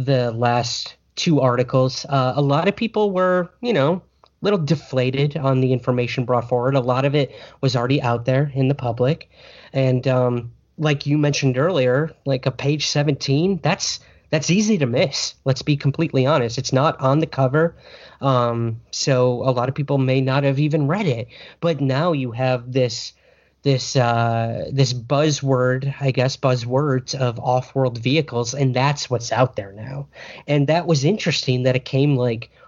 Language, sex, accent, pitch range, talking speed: English, male, American, 125-150 Hz, 175 wpm